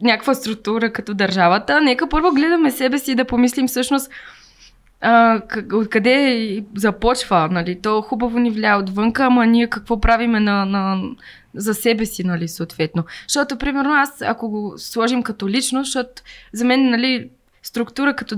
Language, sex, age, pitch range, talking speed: Bulgarian, female, 20-39, 215-255 Hz, 155 wpm